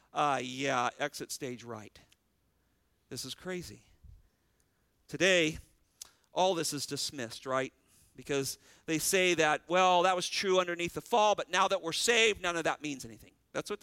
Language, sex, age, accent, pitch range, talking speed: English, male, 50-69, American, 135-185 Hz, 160 wpm